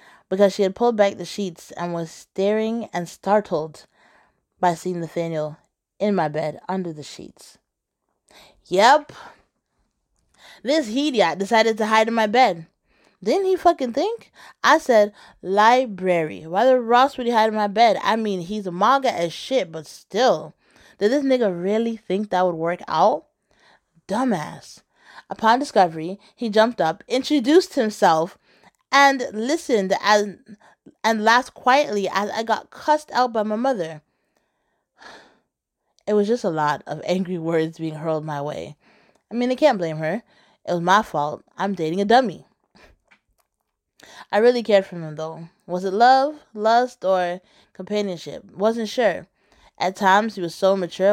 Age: 20-39